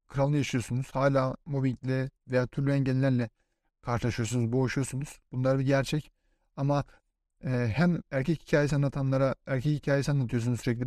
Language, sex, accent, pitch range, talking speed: Turkish, male, native, 130-155 Hz, 115 wpm